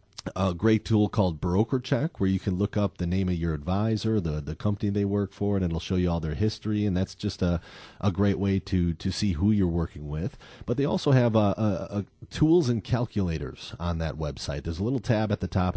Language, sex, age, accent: English, male, 40-59, American